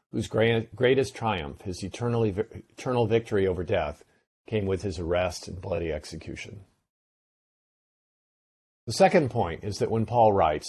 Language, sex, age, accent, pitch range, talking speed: English, male, 50-69, American, 90-115 Hz, 135 wpm